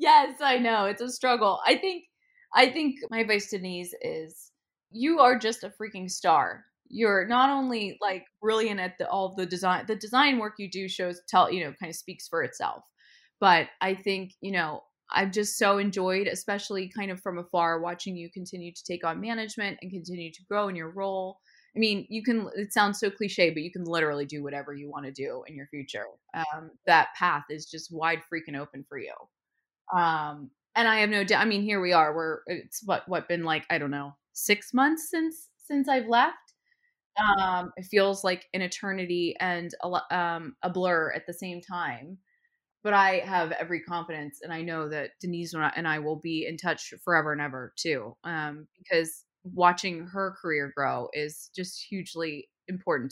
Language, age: English, 20-39